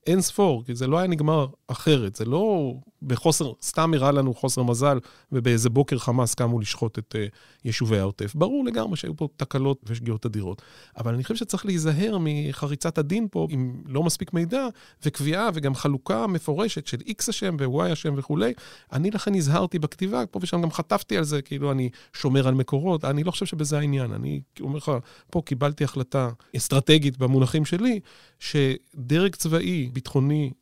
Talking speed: 155 wpm